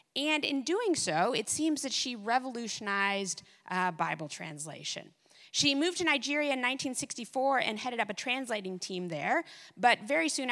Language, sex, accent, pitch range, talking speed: English, female, American, 190-260 Hz, 160 wpm